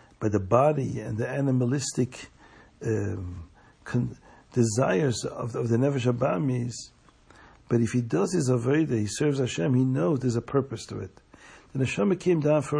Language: English